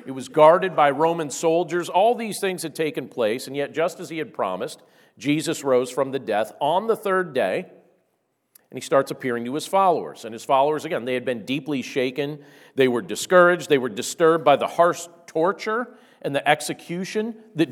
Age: 50-69